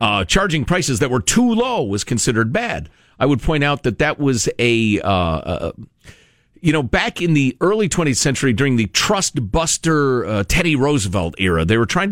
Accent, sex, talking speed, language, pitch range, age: American, male, 195 wpm, English, 105-160 Hz, 50-69